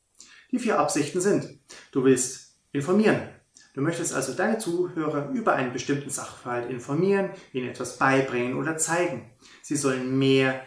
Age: 30-49